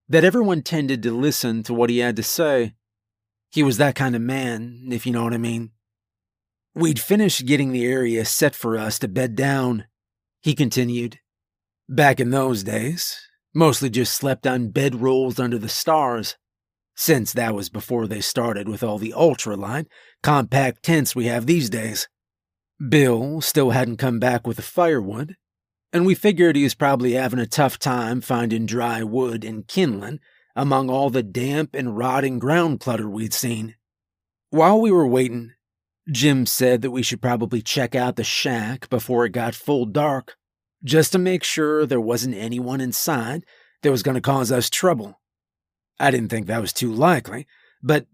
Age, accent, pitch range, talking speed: 30-49, American, 115-145 Hz, 175 wpm